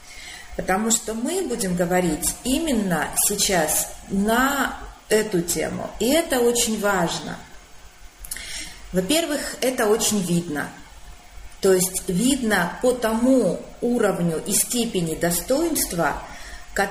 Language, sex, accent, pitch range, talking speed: Russian, female, native, 185-250 Hz, 95 wpm